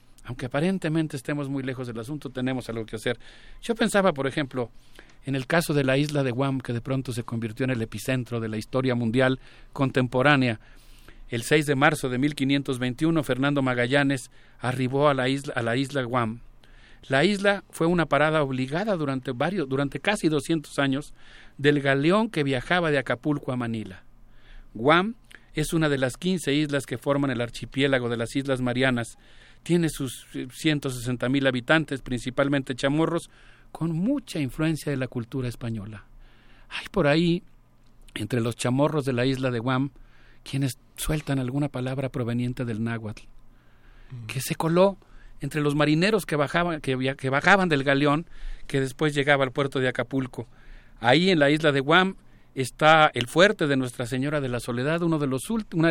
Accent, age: Mexican, 40-59